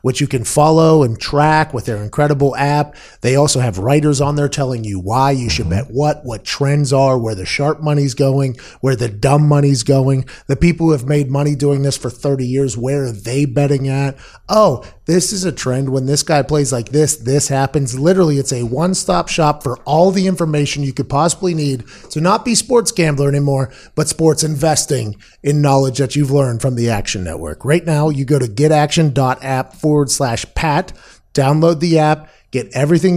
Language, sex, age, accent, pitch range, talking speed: English, male, 30-49, American, 135-160 Hz, 200 wpm